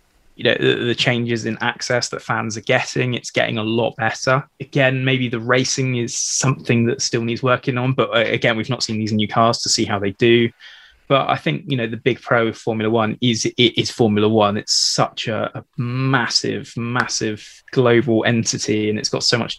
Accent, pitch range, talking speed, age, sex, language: British, 110-125 Hz, 210 wpm, 20-39, male, English